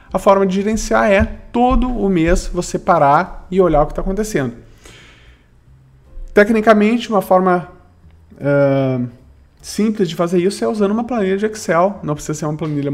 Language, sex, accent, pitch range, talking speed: Portuguese, male, Brazilian, 120-185 Hz, 160 wpm